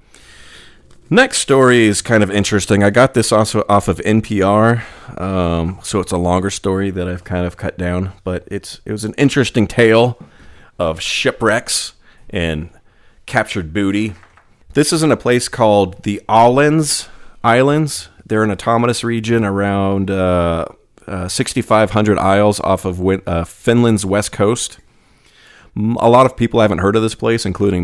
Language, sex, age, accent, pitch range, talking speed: English, male, 30-49, American, 95-115 Hz, 155 wpm